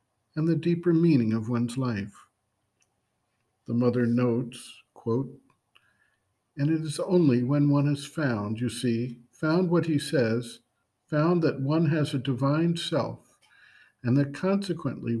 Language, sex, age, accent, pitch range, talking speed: English, male, 50-69, American, 120-150 Hz, 140 wpm